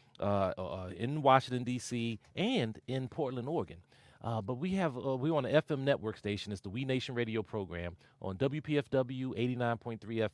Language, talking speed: English, 170 wpm